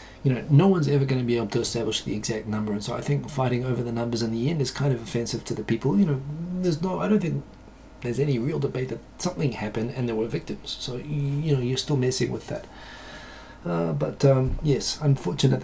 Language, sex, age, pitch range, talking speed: English, male, 30-49, 120-150 Hz, 245 wpm